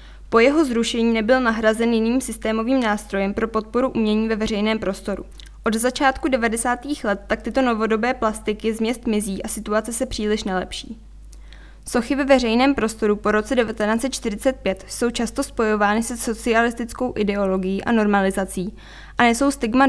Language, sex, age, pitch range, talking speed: Czech, female, 10-29, 210-245 Hz, 140 wpm